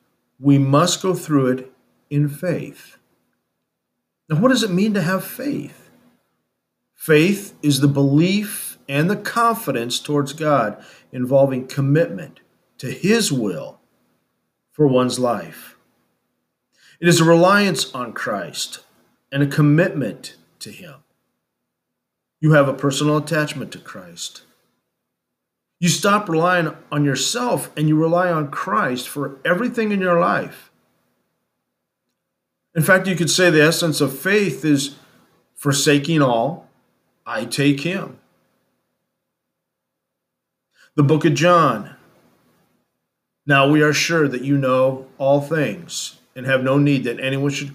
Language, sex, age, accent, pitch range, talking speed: English, male, 50-69, American, 130-170 Hz, 125 wpm